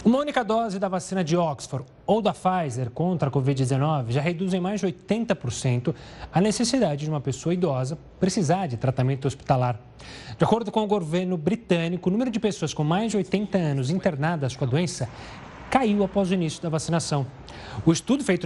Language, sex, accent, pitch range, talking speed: Portuguese, male, Brazilian, 145-185 Hz, 185 wpm